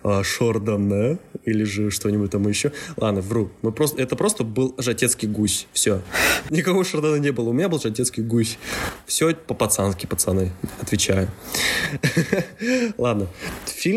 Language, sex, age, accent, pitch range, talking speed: Russian, male, 20-39, native, 105-150 Hz, 130 wpm